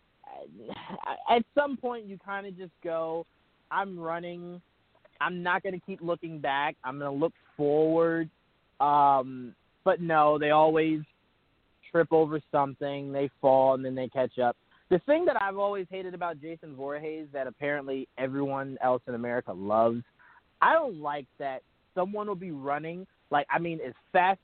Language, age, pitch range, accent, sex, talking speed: English, 20-39, 145-190 Hz, American, male, 160 wpm